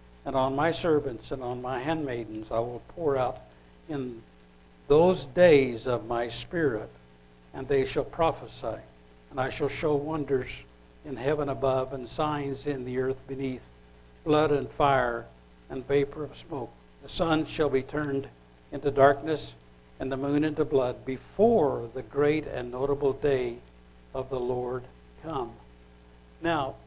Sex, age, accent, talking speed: male, 60-79, American, 145 wpm